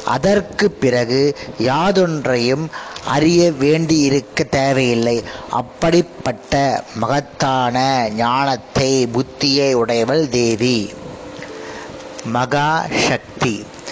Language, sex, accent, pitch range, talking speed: Tamil, male, native, 130-165 Hz, 65 wpm